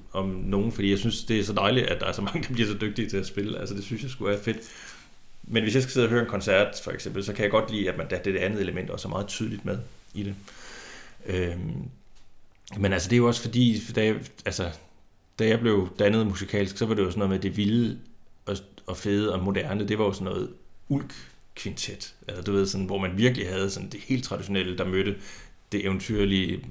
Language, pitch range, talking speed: Danish, 95-110 Hz, 250 wpm